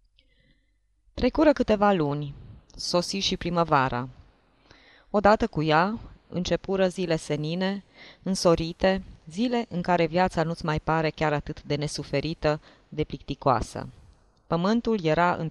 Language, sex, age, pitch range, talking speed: Romanian, female, 20-39, 150-190 Hz, 110 wpm